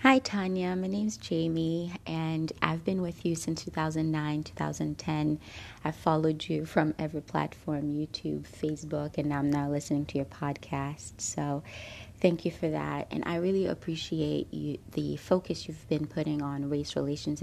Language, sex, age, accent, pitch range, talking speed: English, female, 30-49, American, 135-155 Hz, 160 wpm